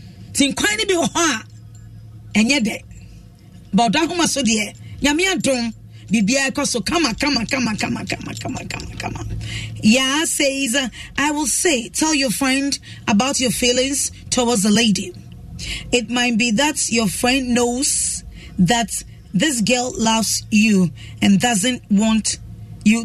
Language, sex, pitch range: English, female, 205-275 Hz